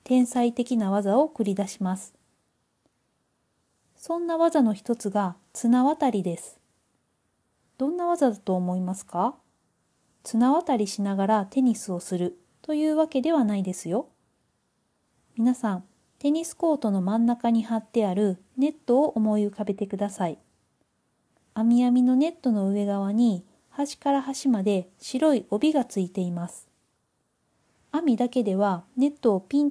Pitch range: 200-270 Hz